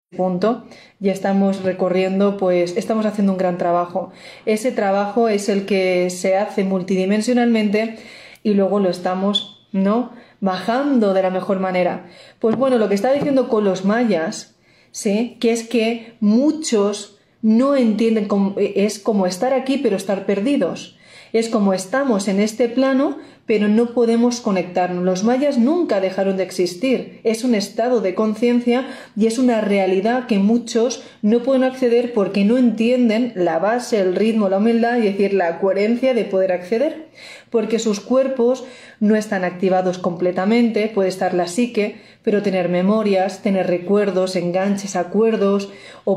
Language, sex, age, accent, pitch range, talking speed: Spanish, female, 30-49, Spanish, 195-240 Hz, 150 wpm